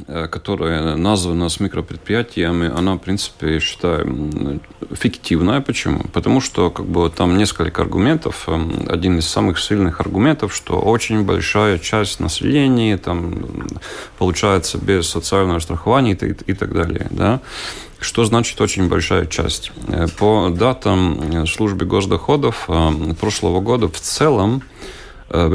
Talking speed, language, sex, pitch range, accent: 115 wpm, Russian, male, 85-110 Hz, native